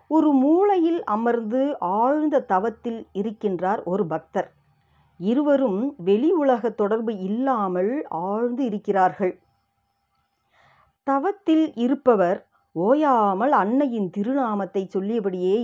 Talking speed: 75 wpm